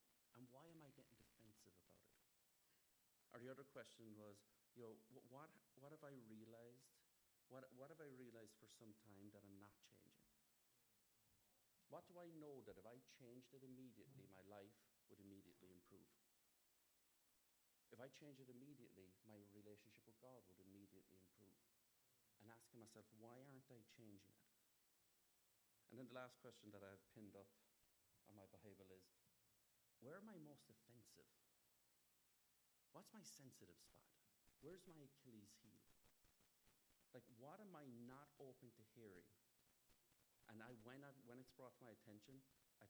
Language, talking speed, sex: English, 160 wpm, male